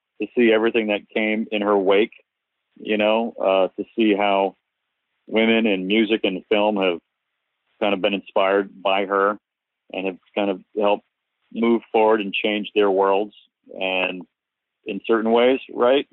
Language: English